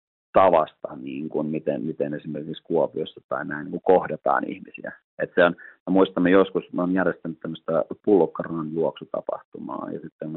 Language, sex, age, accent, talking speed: Finnish, male, 40-59, native, 150 wpm